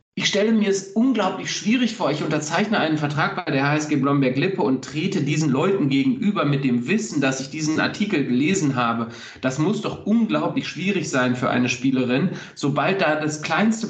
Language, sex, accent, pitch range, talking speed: German, male, German, 135-190 Hz, 180 wpm